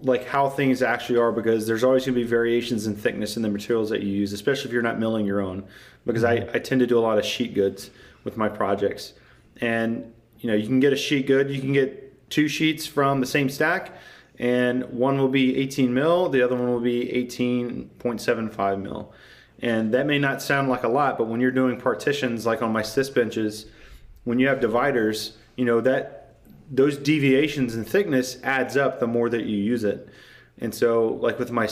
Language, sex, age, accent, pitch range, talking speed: English, male, 30-49, American, 110-135 Hz, 215 wpm